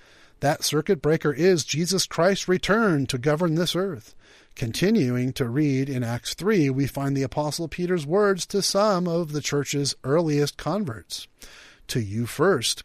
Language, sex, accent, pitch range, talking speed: English, male, American, 130-185 Hz, 155 wpm